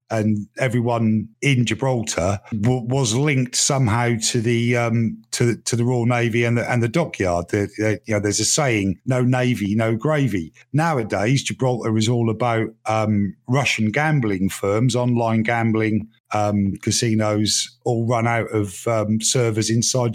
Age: 50-69